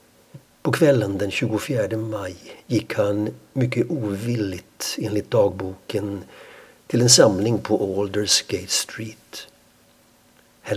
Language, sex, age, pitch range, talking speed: Swedish, male, 60-79, 100-115 Hz, 100 wpm